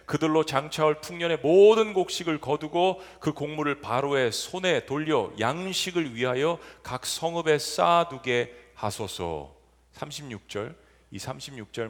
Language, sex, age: Korean, male, 40-59